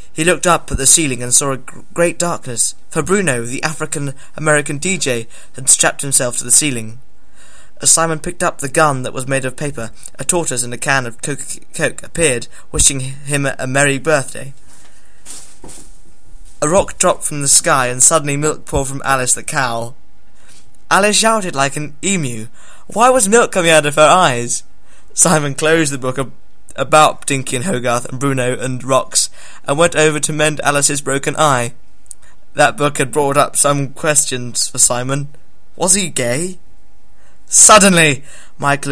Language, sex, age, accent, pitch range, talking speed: English, male, 20-39, British, 130-155 Hz, 170 wpm